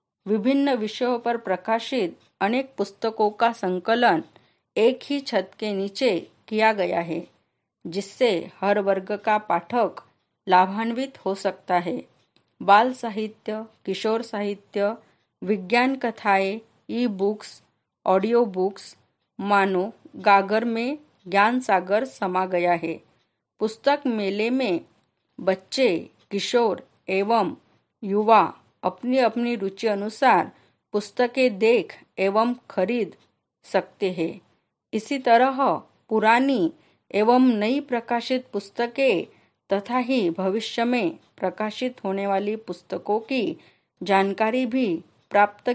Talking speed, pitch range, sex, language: 105 wpm, 195-240 Hz, female, Marathi